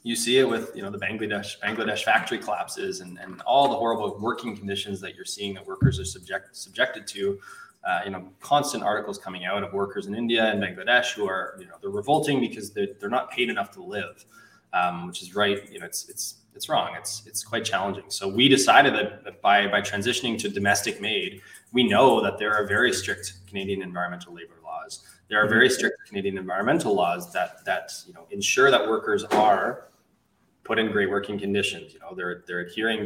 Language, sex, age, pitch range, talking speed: English, male, 20-39, 100-145 Hz, 205 wpm